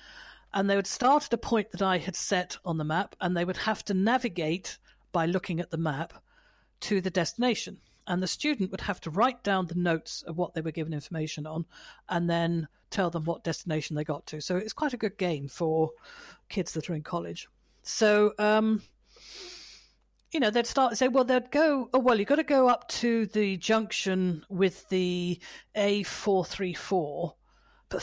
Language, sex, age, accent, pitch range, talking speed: English, female, 50-69, British, 170-220 Hz, 195 wpm